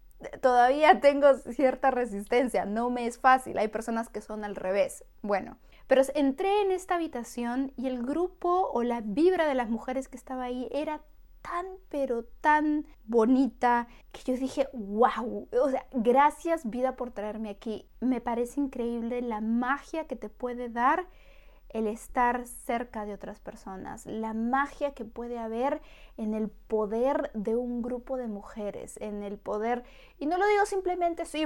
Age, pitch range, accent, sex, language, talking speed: 20-39, 230-290 Hz, Mexican, female, Spanish, 160 wpm